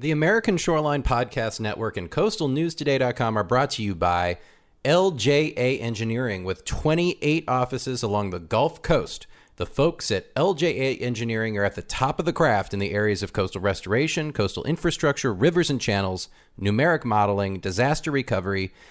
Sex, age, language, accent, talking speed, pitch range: male, 40-59, English, American, 150 wpm, 105-145 Hz